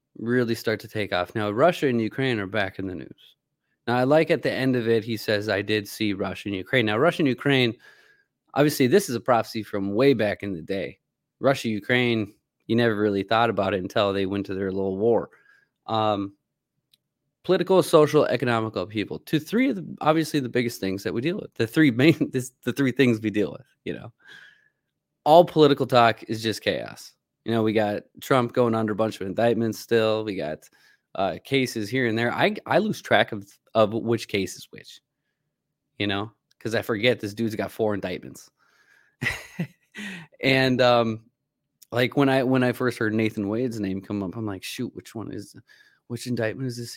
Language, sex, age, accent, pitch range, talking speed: English, male, 20-39, American, 105-135 Hz, 200 wpm